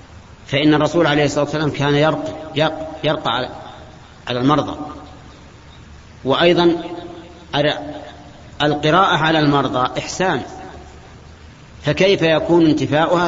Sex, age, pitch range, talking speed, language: male, 40-59, 135-155 Hz, 80 wpm, Arabic